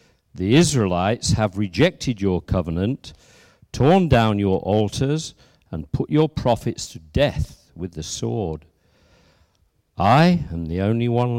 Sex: male